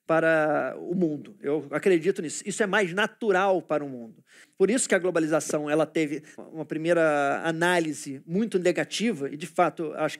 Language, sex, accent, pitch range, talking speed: Portuguese, male, Brazilian, 160-195 Hz, 170 wpm